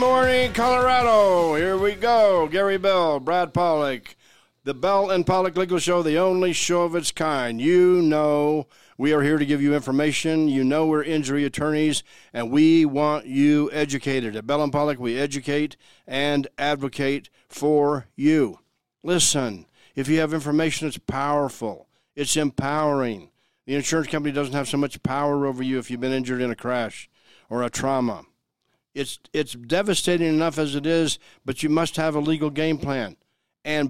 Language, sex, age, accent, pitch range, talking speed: English, male, 50-69, American, 130-160 Hz, 170 wpm